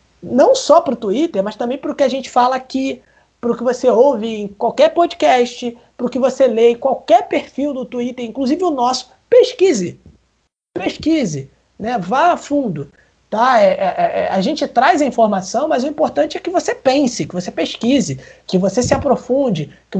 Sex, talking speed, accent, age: male, 195 wpm, Brazilian, 20-39